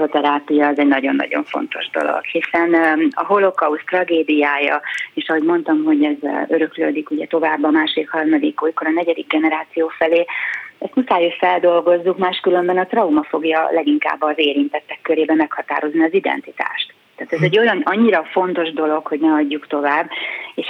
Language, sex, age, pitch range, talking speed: Hungarian, female, 30-49, 155-190 Hz, 155 wpm